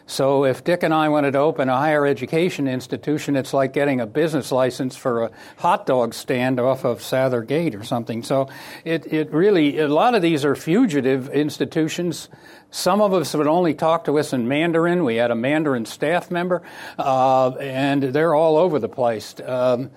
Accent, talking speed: American, 190 wpm